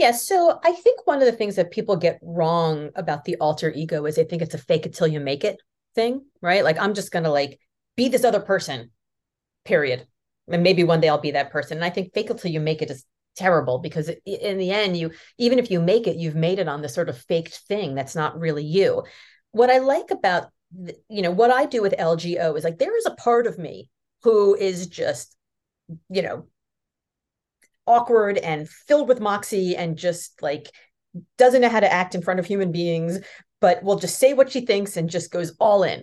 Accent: American